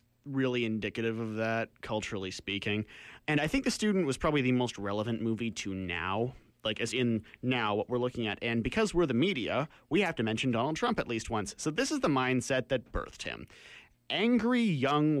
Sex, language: male, English